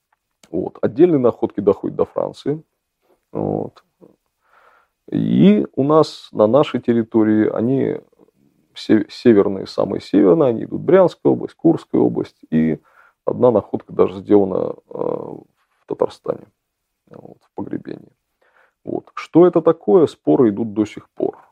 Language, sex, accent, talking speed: Russian, male, native, 110 wpm